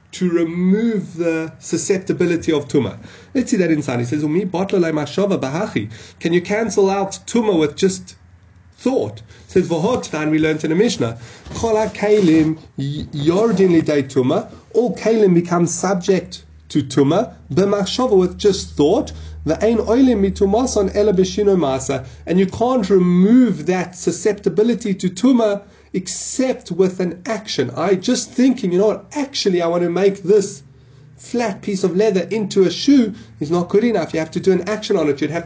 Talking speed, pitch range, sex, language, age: 135 wpm, 155-210 Hz, male, English, 30-49